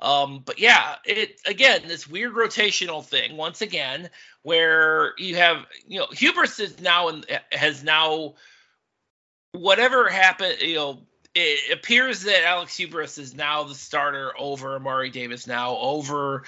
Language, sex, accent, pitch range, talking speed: English, male, American, 145-200 Hz, 145 wpm